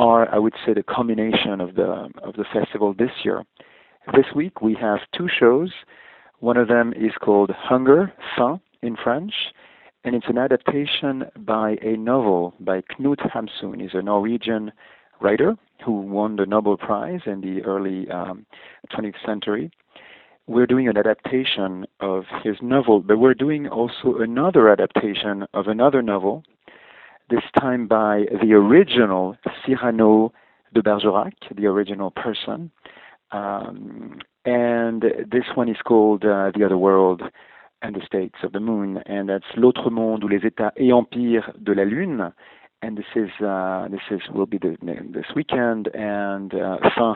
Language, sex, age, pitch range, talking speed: English, male, 50-69, 100-120 Hz, 155 wpm